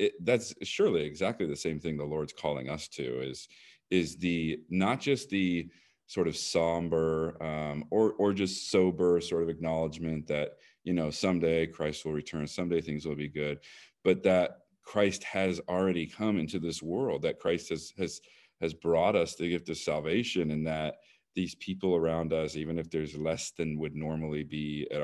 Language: English